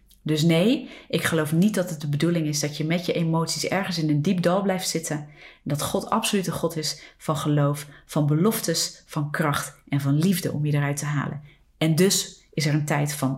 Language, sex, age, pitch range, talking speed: Dutch, female, 40-59, 145-175 Hz, 220 wpm